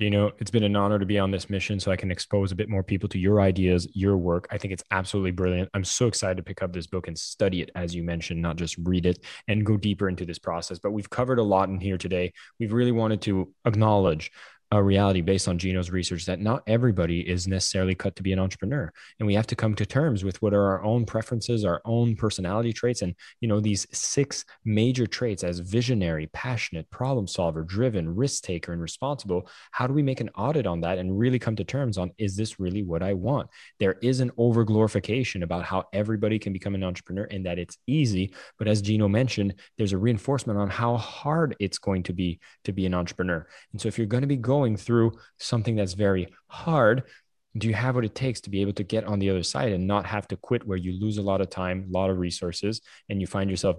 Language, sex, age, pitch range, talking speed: English, male, 20-39, 95-115 Hz, 245 wpm